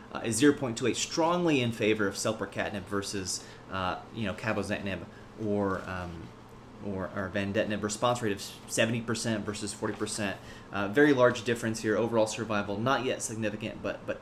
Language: English